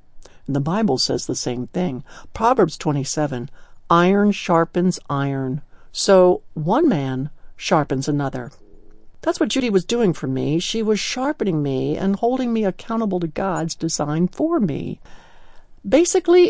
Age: 60-79